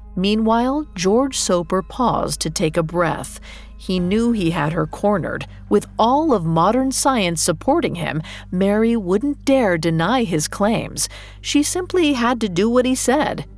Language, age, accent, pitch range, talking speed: English, 40-59, American, 165-240 Hz, 155 wpm